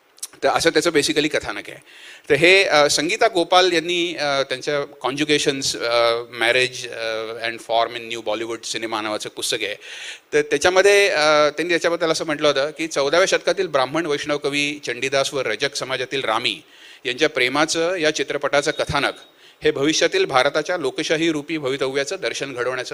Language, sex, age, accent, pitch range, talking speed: Hindi, male, 30-49, native, 140-190 Hz, 120 wpm